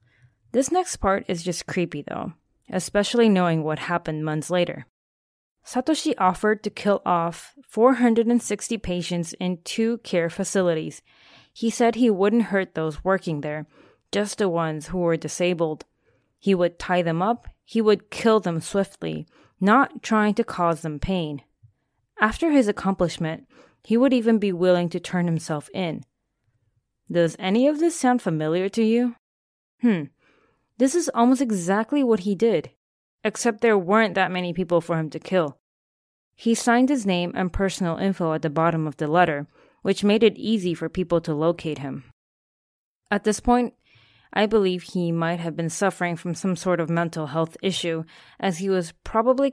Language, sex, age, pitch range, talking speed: English, female, 20-39, 160-220 Hz, 165 wpm